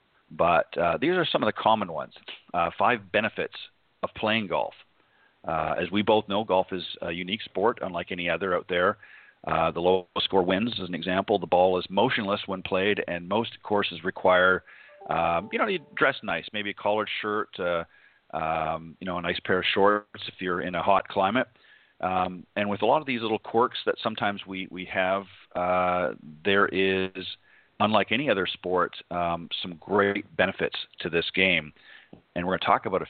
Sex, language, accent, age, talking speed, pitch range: male, English, American, 40-59, 195 wpm, 90-100 Hz